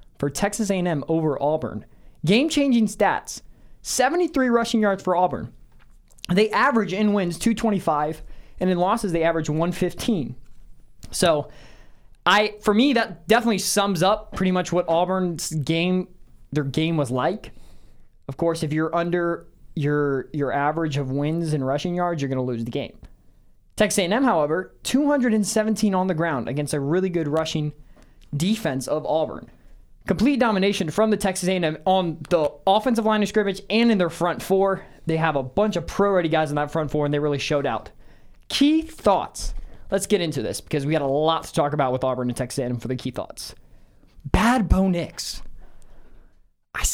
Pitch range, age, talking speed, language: 145-205 Hz, 20-39, 170 wpm, English